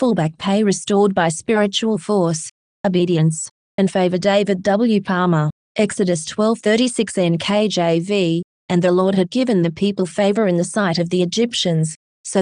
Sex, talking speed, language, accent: female, 145 wpm, English, Australian